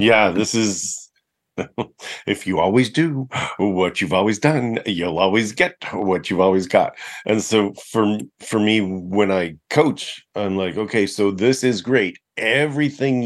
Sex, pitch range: male, 95-115 Hz